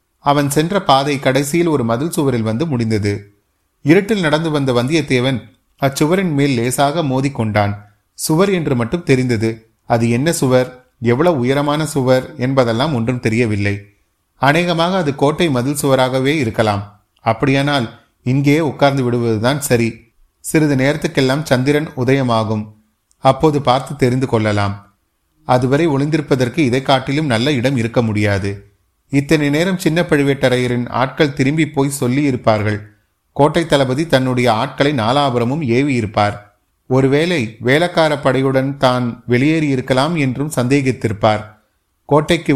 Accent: native